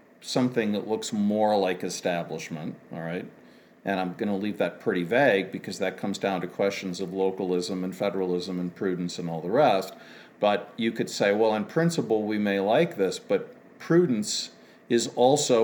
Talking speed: 180 wpm